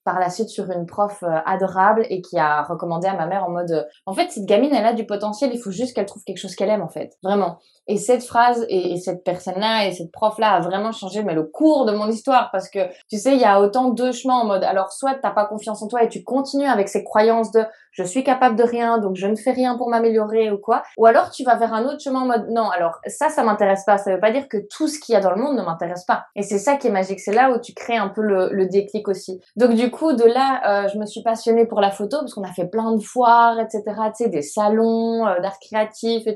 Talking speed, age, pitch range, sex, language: 290 wpm, 20-39, 195-250 Hz, female, French